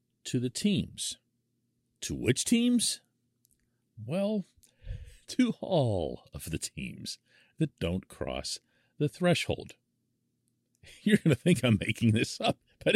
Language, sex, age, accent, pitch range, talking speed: English, male, 40-59, American, 120-190 Hz, 115 wpm